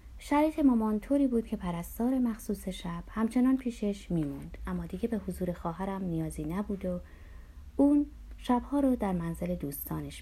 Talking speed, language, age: 145 wpm, Persian, 30-49